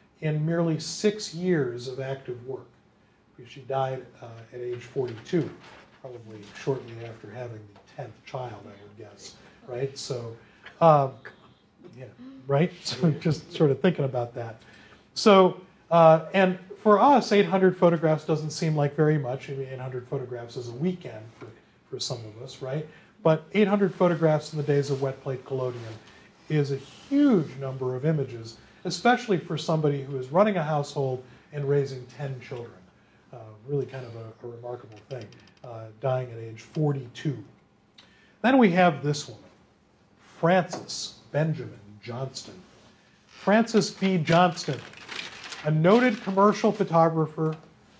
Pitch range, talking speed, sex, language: 125-170 Hz, 145 wpm, male, English